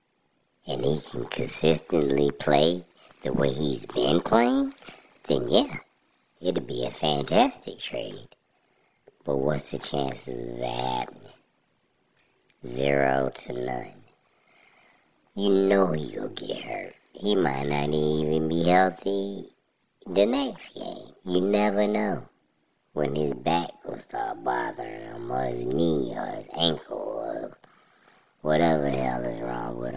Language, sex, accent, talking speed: English, male, American, 120 wpm